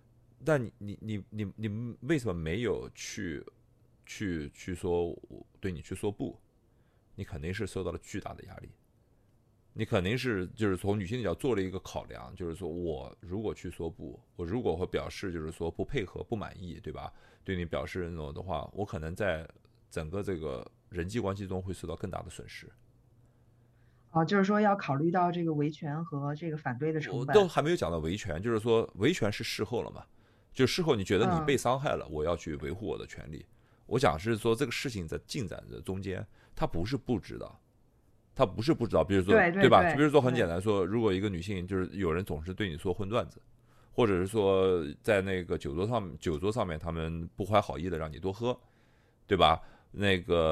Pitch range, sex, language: 90-120 Hz, male, Chinese